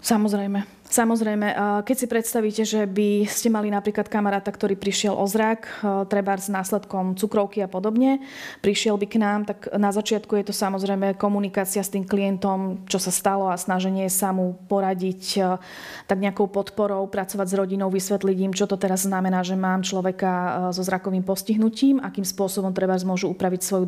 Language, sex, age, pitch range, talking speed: Slovak, female, 30-49, 190-215 Hz, 170 wpm